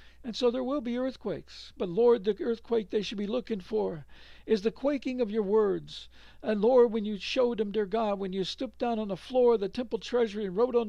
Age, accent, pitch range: 60-79, American, 195-235 Hz